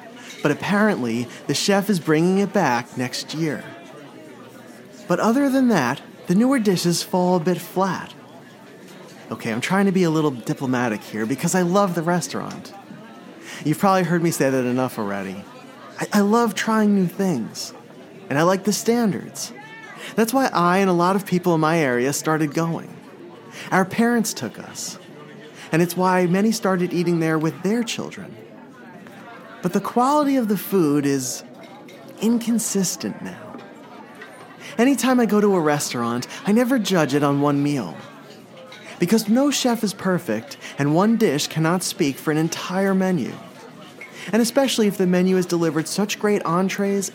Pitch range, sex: 160-215 Hz, male